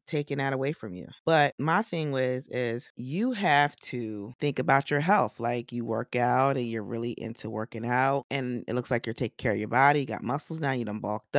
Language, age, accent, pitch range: English, 30-49, American, 115-145 Hz